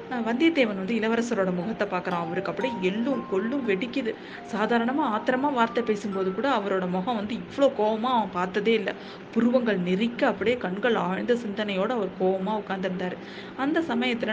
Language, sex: Tamil, female